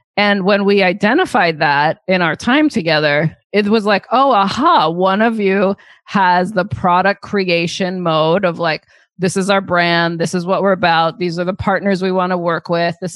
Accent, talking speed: American, 195 wpm